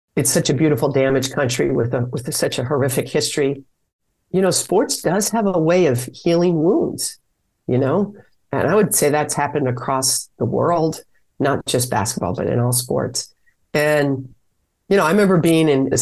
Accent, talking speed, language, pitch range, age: American, 185 wpm, English, 130-160 Hz, 50-69